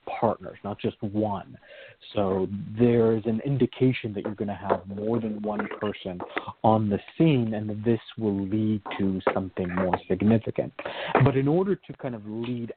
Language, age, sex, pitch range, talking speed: English, 40-59, male, 105-130 Hz, 165 wpm